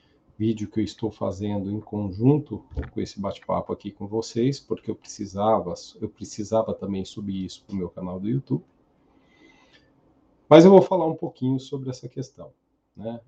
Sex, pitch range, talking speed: male, 100-130 Hz, 165 wpm